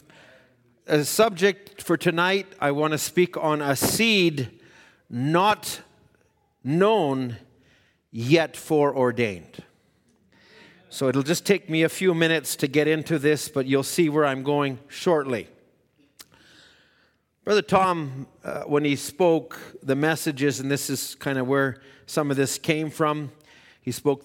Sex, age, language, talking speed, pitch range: male, 50-69, English, 140 wpm, 140-185 Hz